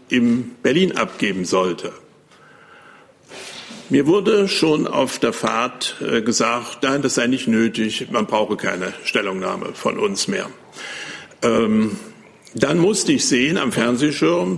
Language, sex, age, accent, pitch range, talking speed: German, male, 60-79, German, 110-135 Hz, 120 wpm